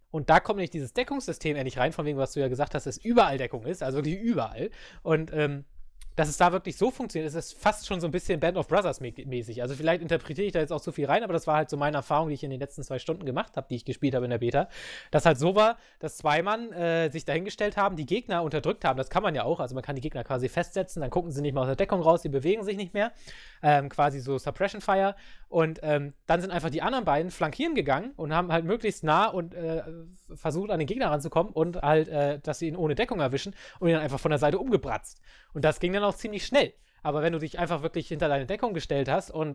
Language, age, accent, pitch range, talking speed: English, 20-39, German, 140-180 Hz, 275 wpm